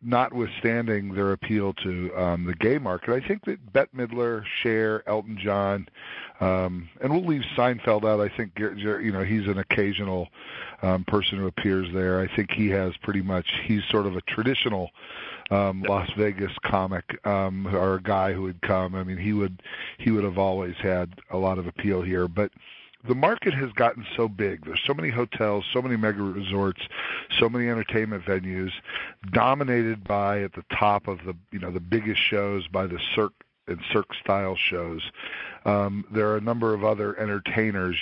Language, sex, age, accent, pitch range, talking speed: English, male, 40-59, American, 95-115 Hz, 180 wpm